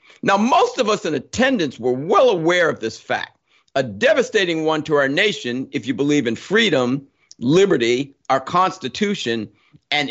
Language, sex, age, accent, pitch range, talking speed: English, male, 50-69, American, 115-190 Hz, 160 wpm